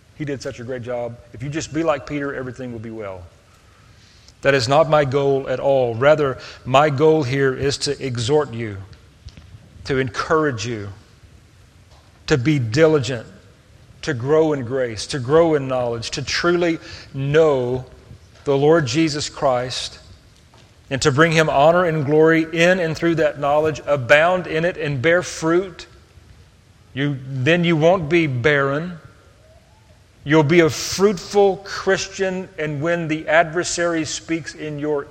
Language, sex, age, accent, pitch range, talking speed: English, male, 40-59, American, 110-150 Hz, 150 wpm